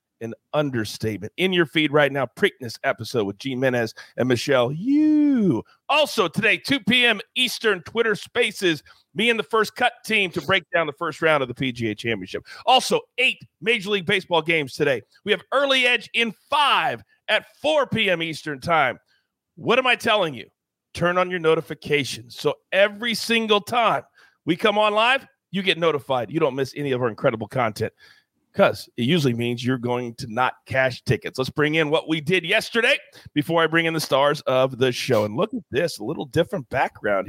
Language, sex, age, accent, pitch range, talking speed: English, male, 40-59, American, 140-210 Hz, 190 wpm